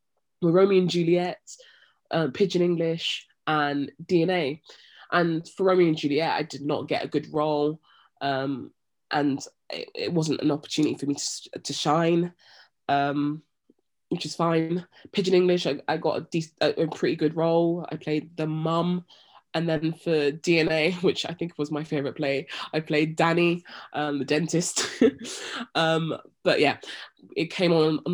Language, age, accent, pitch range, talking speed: English, 20-39, British, 150-170 Hz, 160 wpm